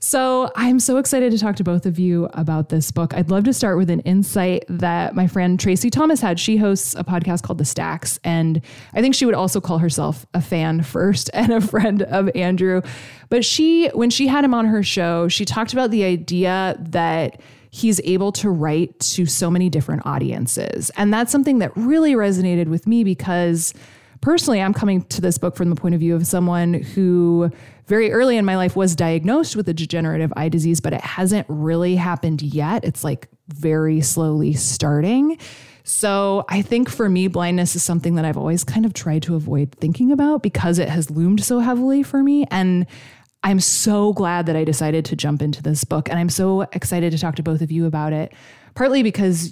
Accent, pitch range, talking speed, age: American, 160-210 Hz, 205 wpm, 20-39